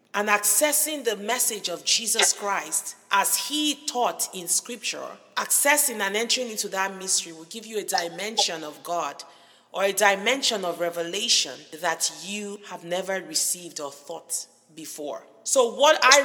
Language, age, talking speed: English, 40-59, 150 wpm